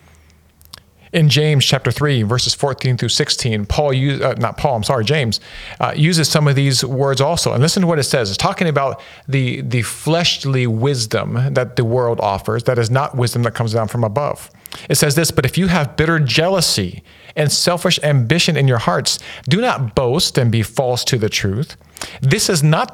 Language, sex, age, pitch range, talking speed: English, male, 40-59, 105-145 Hz, 195 wpm